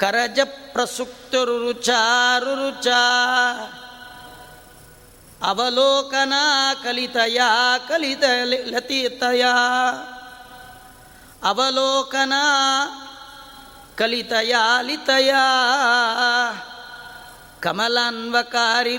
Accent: native